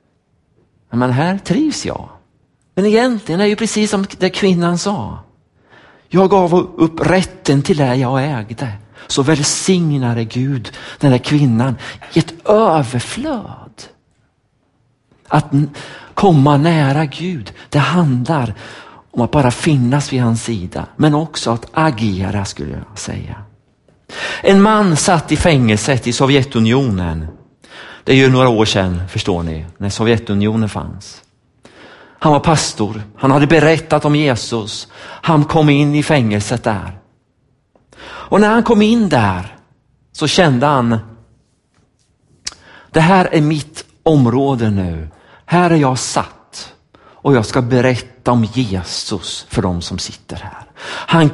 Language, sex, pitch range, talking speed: Swedish, male, 110-155 Hz, 130 wpm